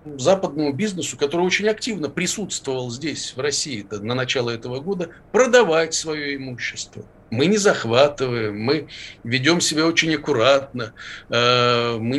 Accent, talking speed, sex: native, 125 wpm, male